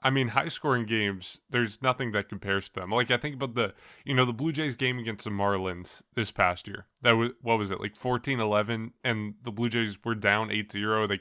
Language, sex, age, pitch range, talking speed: English, male, 20-39, 100-125 Hz, 230 wpm